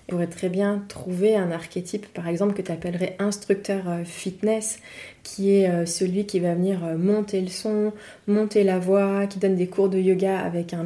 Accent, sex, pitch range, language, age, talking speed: French, female, 180-215 Hz, French, 20-39, 180 wpm